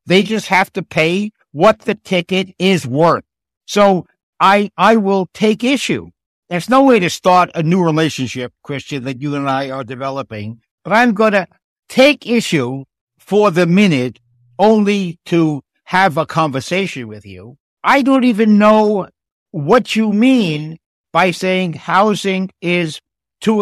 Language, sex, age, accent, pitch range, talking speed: English, male, 60-79, American, 155-210 Hz, 150 wpm